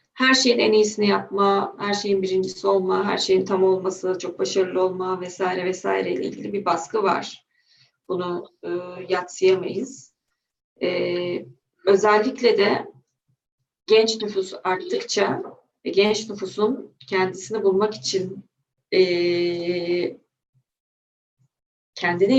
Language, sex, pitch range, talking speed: Turkish, female, 175-210 Hz, 100 wpm